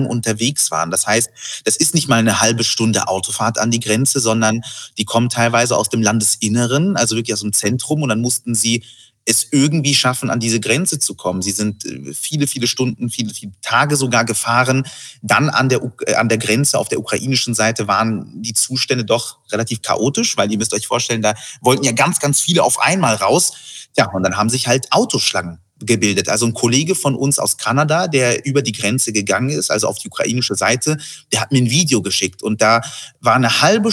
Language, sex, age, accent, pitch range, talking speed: German, male, 30-49, German, 110-135 Hz, 205 wpm